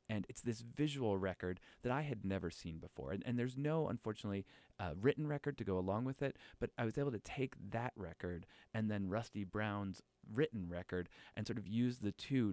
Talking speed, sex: 210 wpm, male